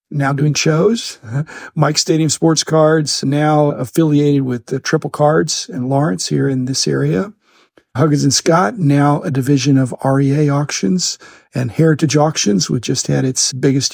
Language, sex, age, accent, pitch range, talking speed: English, male, 50-69, American, 130-150 Hz, 160 wpm